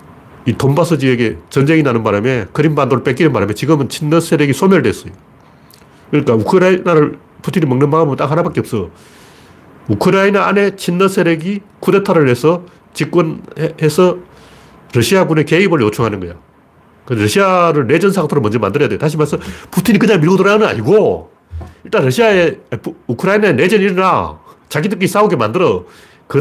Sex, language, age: male, Korean, 40-59